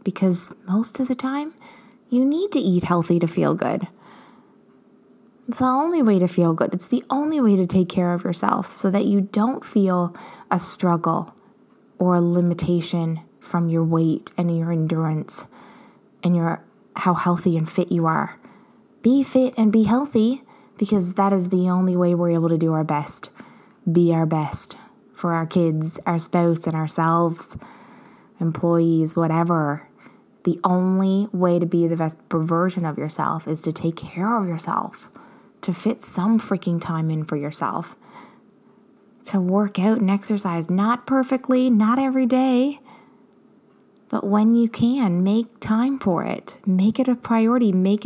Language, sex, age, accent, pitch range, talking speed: English, female, 20-39, American, 175-230 Hz, 160 wpm